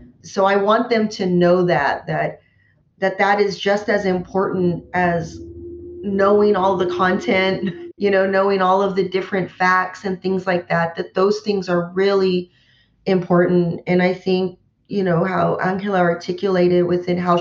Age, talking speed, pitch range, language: 40-59, 160 wpm, 170-195 Hz, English